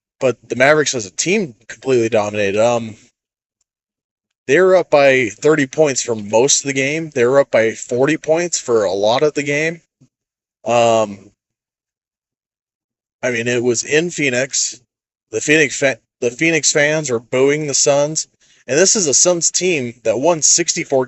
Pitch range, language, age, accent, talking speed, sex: 120-155 Hz, English, 30-49, American, 160 wpm, male